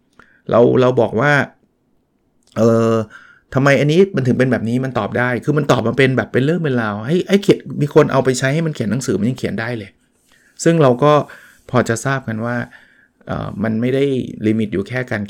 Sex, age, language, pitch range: male, 20-39, Thai, 110-135 Hz